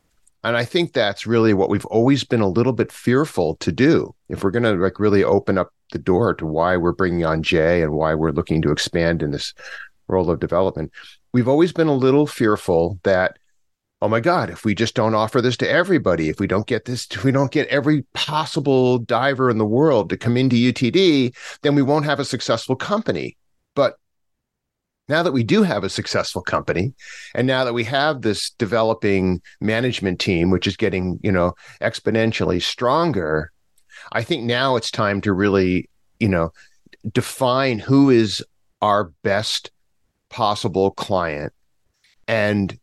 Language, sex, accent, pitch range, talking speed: English, male, American, 95-130 Hz, 180 wpm